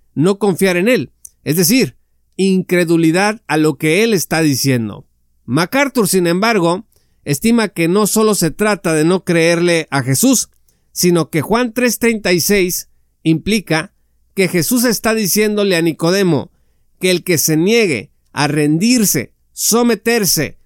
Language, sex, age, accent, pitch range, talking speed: Spanish, male, 50-69, Mexican, 150-210 Hz, 135 wpm